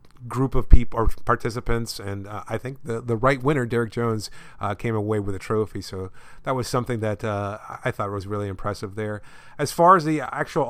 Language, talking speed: English, 215 wpm